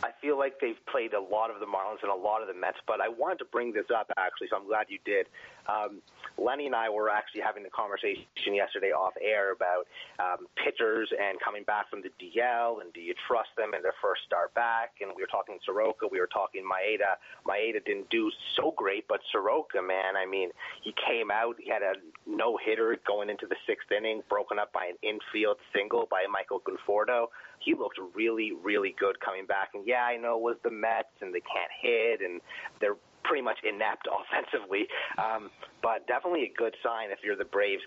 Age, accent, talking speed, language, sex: 30-49, American, 210 wpm, English, male